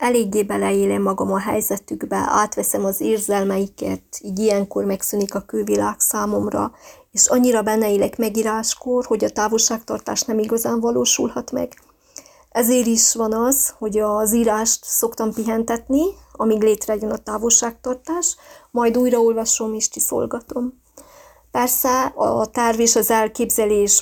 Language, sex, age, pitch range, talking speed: Hungarian, female, 30-49, 210-245 Hz, 120 wpm